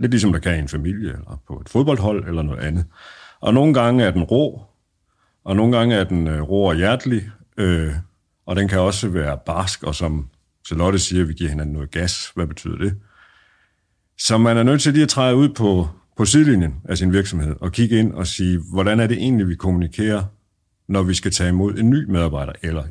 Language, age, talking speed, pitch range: Danish, 50-69, 215 wpm, 85-105 Hz